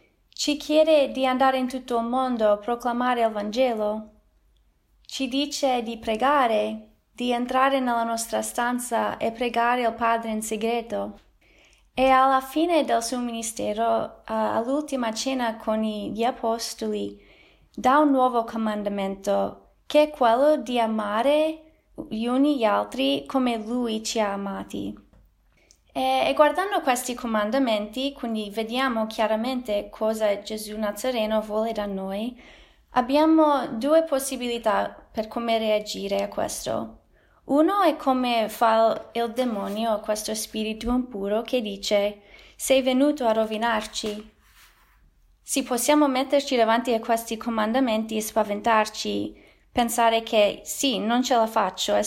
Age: 20-39